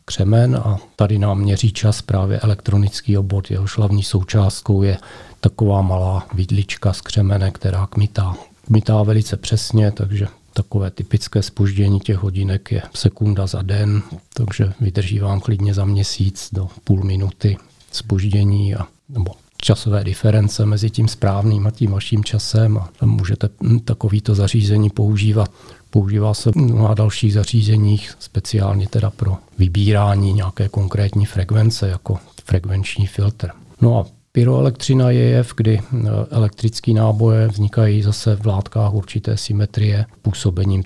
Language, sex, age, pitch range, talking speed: Czech, male, 40-59, 100-110 Hz, 135 wpm